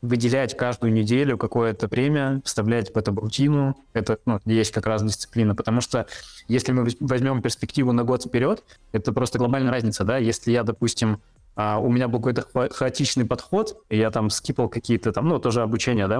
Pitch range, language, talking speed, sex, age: 110-125 Hz, Russian, 180 wpm, male, 20-39